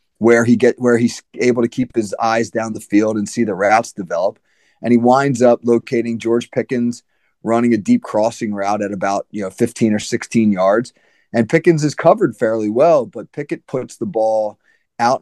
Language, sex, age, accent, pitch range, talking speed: English, male, 30-49, American, 105-120 Hz, 195 wpm